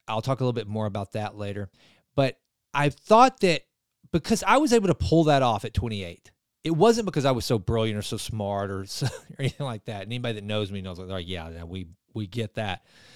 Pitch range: 110-145 Hz